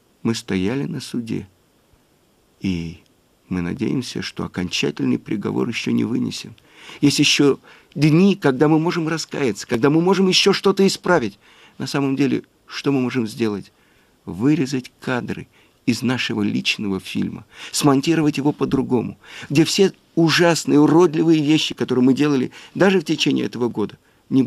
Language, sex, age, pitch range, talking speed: Russian, male, 50-69, 125-185 Hz, 135 wpm